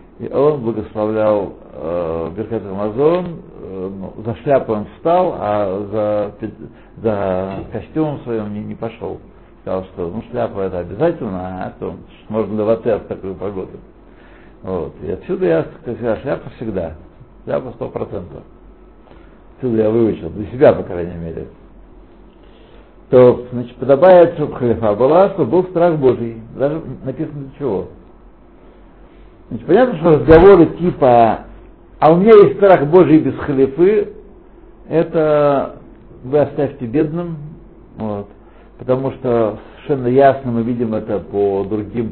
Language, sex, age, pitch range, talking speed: Russian, male, 60-79, 110-155 Hz, 130 wpm